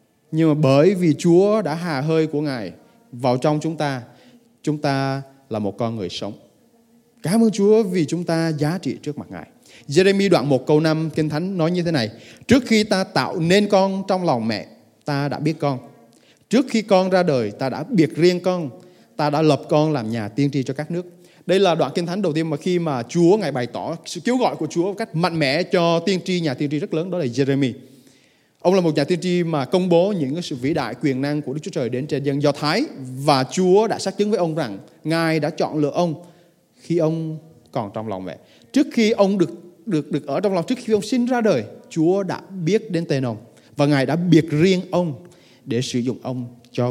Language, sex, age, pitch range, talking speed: Vietnamese, male, 20-39, 140-190 Hz, 235 wpm